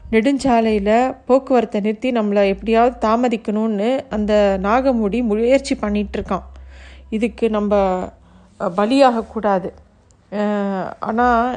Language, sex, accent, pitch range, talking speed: Tamil, female, native, 205-240 Hz, 80 wpm